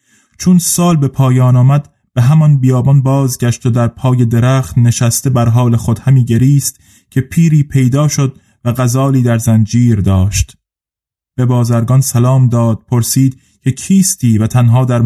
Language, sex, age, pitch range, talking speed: Persian, male, 20-39, 115-140 Hz, 150 wpm